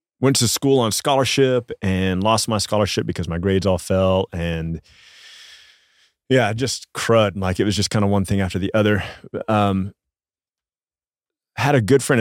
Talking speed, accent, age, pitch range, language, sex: 165 wpm, American, 30-49, 90-105 Hz, English, male